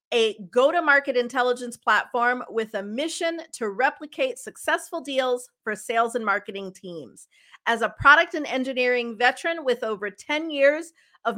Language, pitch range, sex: English, 220-300 Hz, female